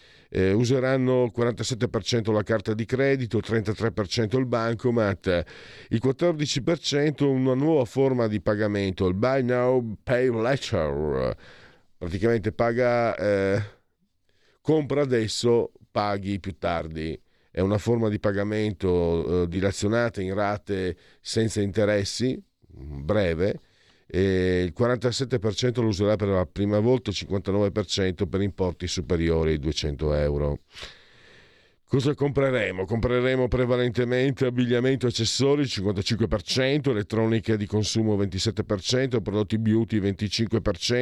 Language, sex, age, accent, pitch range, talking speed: Italian, male, 50-69, native, 100-125 Hz, 110 wpm